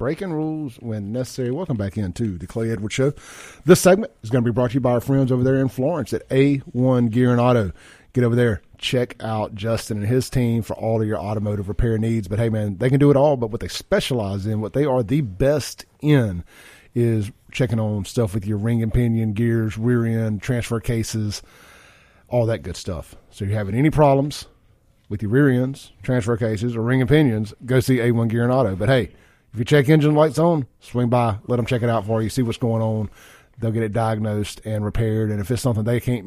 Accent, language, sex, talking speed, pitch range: American, English, male, 235 wpm, 110-130 Hz